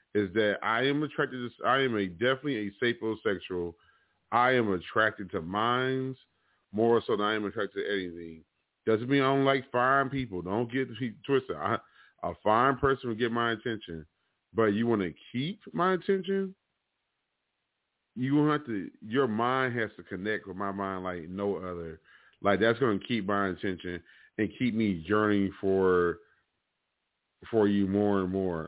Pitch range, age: 95-125 Hz, 30-49